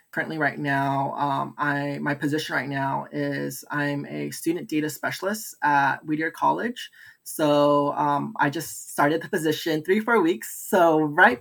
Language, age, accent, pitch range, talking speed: English, 20-39, American, 140-155 Hz, 160 wpm